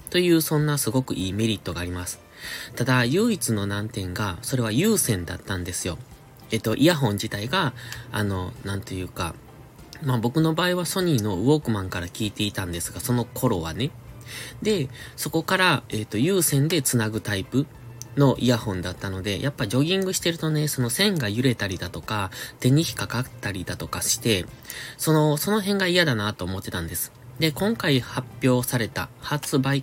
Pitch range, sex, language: 100-145 Hz, male, Japanese